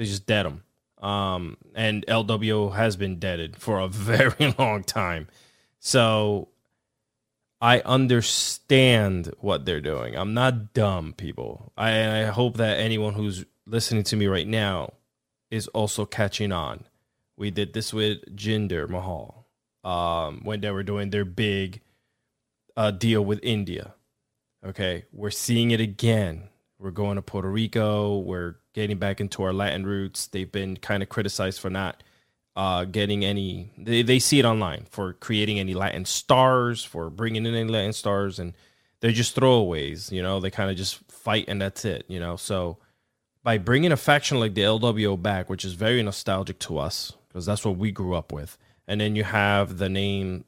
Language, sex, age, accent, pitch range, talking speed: English, male, 20-39, American, 95-110 Hz, 170 wpm